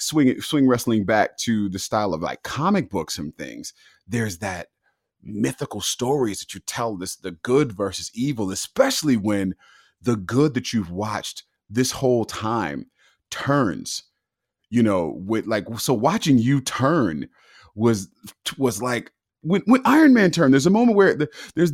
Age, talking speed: 30-49, 160 wpm